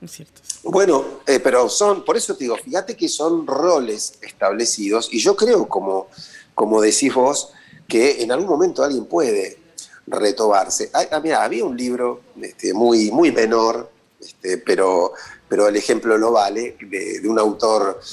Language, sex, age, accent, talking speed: Spanish, male, 40-59, Argentinian, 160 wpm